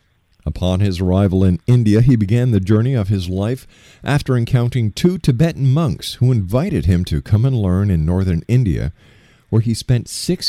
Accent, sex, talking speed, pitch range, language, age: American, male, 175 wpm, 90-125 Hz, English, 50-69